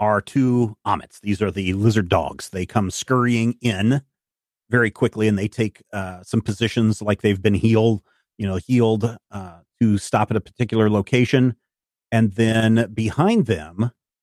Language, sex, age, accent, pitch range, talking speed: English, male, 40-59, American, 105-130 Hz, 160 wpm